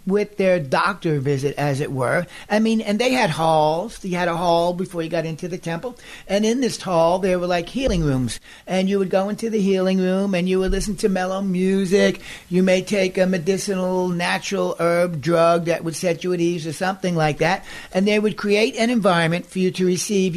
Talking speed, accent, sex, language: 220 wpm, American, male, English